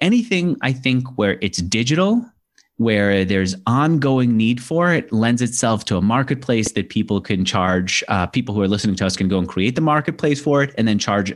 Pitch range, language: 95-135 Hz, English